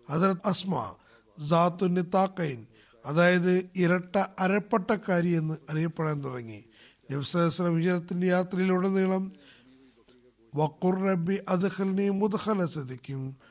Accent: native